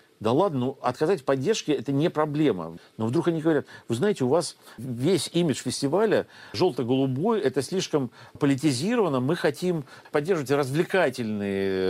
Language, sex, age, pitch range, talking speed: Russian, male, 50-69, 115-155 Hz, 145 wpm